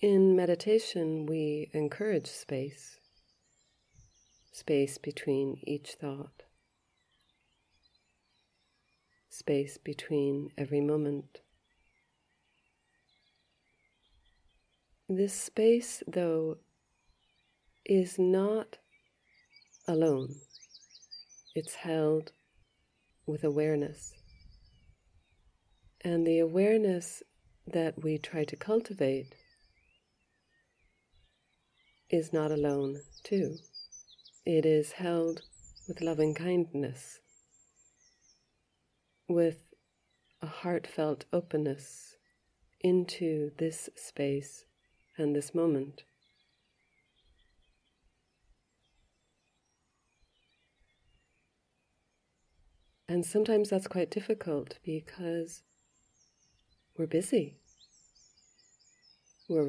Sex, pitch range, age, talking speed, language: female, 140-175 Hz, 40-59, 60 wpm, English